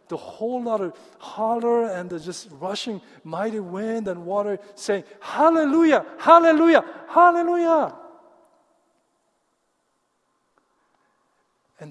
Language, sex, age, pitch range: Korean, male, 50-69, 140-210 Hz